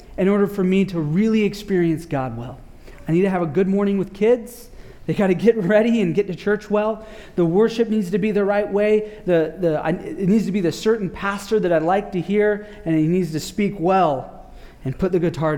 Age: 30-49